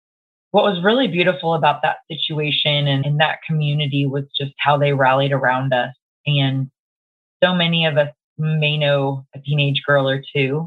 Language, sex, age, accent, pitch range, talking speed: English, female, 20-39, American, 135-155 Hz, 170 wpm